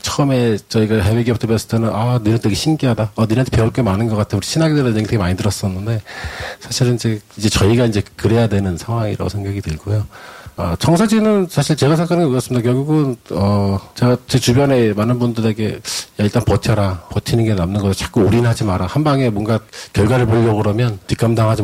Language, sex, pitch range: Korean, male, 110-140 Hz